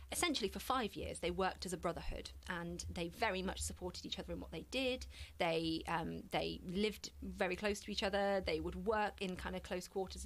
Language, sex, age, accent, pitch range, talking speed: English, female, 30-49, British, 170-210 Hz, 215 wpm